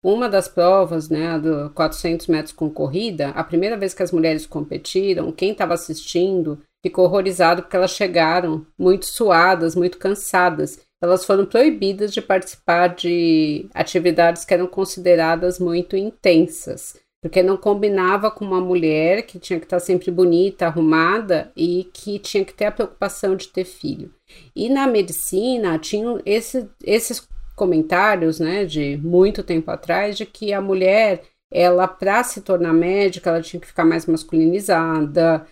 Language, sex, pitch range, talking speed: Portuguese, female, 170-195 Hz, 155 wpm